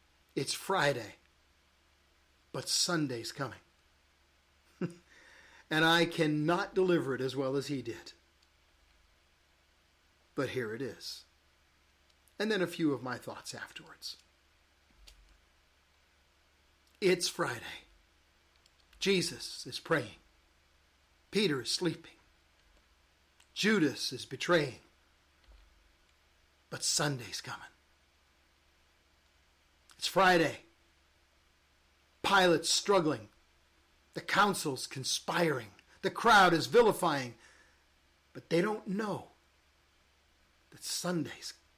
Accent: American